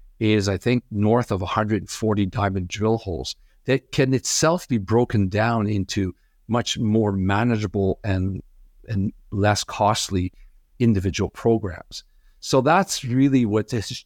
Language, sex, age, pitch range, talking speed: English, male, 50-69, 100-115 Hz, 130 wpm